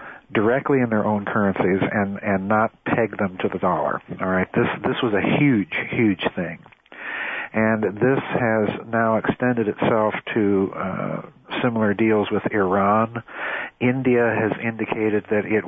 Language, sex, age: English, male, 50-69